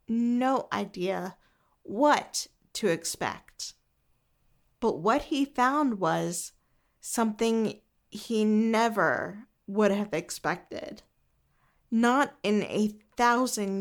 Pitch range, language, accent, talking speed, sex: 205-260 Hz, English, American, 85 wpm, female